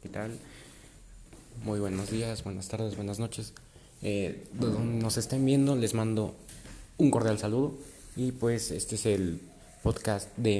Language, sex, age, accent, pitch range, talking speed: Spanish, male, 30-49, Mexican, 100-115 Hz, 140 wpm